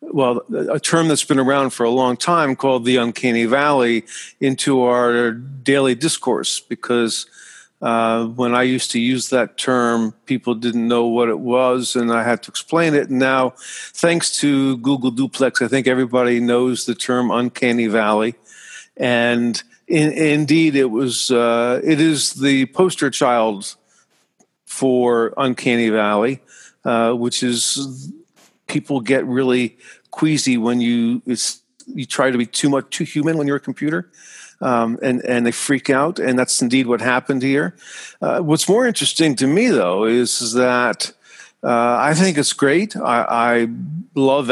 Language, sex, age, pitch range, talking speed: English, male, 50-69, 120-150 Hz, 160 wpm